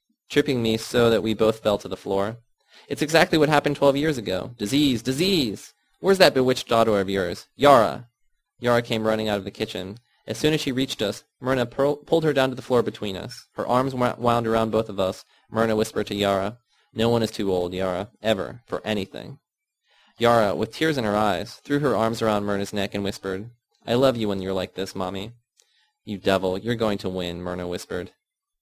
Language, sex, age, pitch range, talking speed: English, male, 20-39, 105-135 Hz, 205 wpm